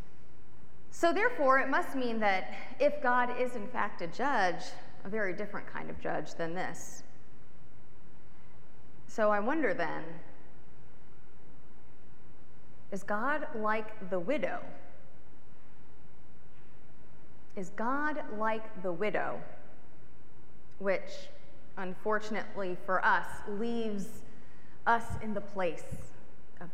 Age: 30-49